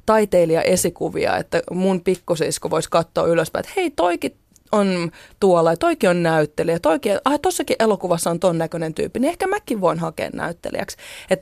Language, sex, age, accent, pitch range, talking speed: Finnish, female, 20-39, native, 170-215 Hz, 160 wpm